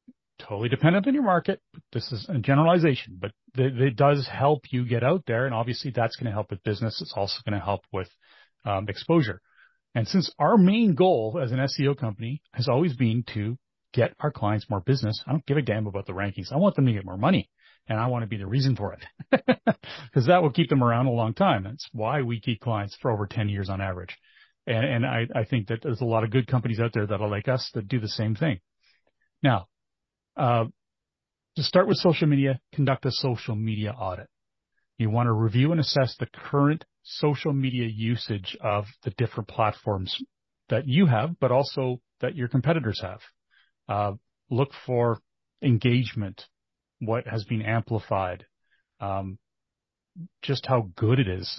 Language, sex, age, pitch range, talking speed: English, male, 40-59, 110-140 Hz, 195 wpm